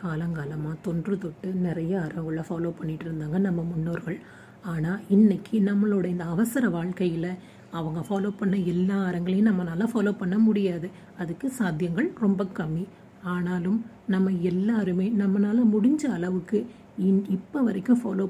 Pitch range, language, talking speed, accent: 180-225 Hz, Tamil, 125 wpm, native